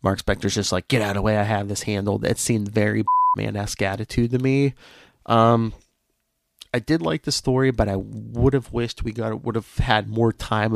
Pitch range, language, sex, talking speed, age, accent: 105-125 Hz, English, male, 210 wpm, 30-49, American